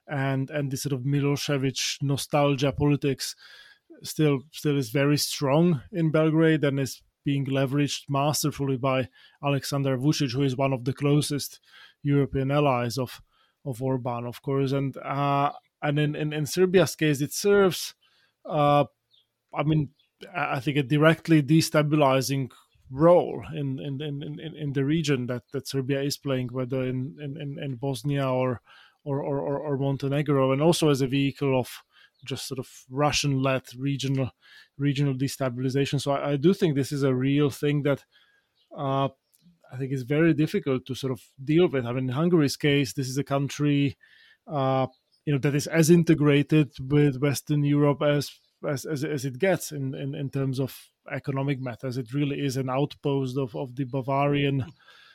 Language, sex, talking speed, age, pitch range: English, male, 165 wpm, 20-39, 135-150 Hz